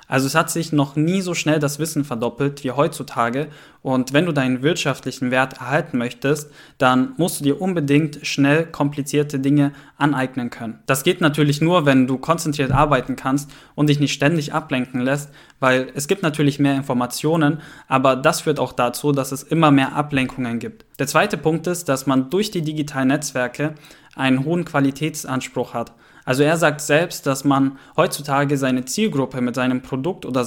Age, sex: 10-29, male